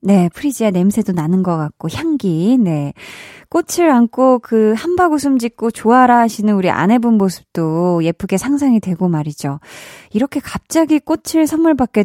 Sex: female